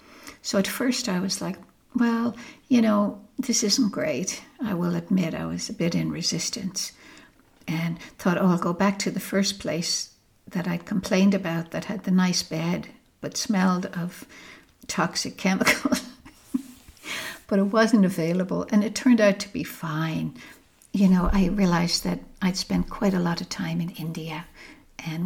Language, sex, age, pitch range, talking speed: English, female, 60-79, 170-210 Hz, 170 wpm